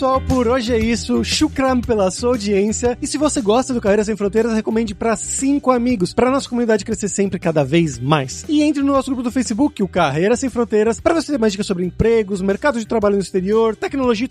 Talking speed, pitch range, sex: 220 wpm, 210-255 Hz, male